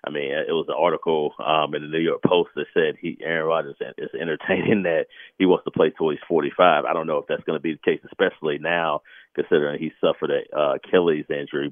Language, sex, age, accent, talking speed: English, male, 40-59, American, 235 wpm